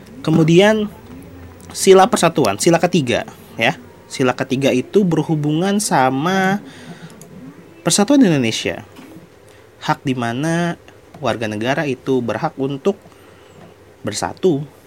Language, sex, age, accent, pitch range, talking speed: Indonesian, male, 30-49, native, 105-145 Hz, 85 wpm